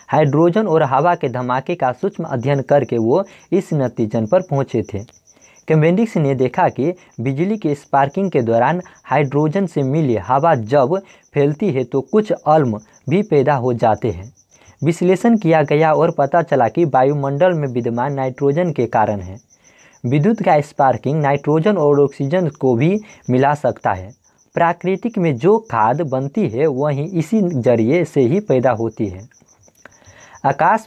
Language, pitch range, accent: Hindi, 130-175 Hz, native